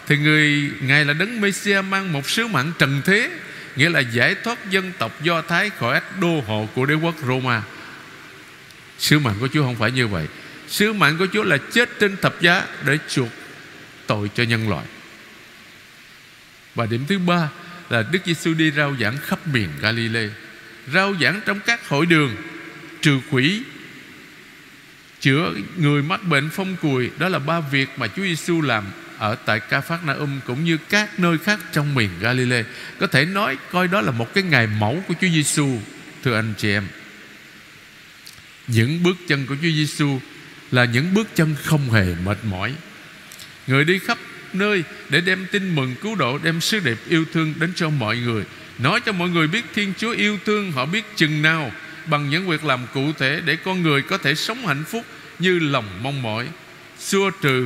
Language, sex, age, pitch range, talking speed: Vietnamese, male, 60-79, 130-180 Hz, 190 wpm